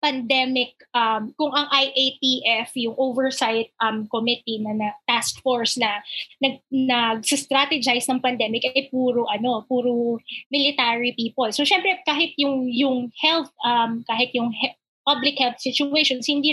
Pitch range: 240-295 Hz